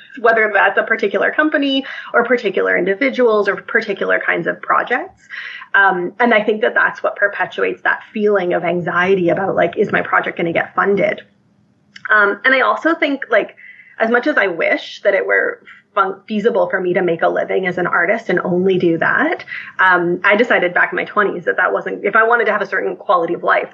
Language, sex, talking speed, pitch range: English, female, 205 wpm, 190-250 Hz